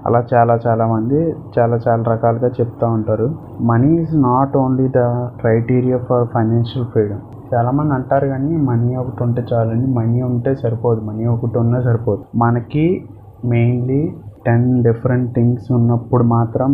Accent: native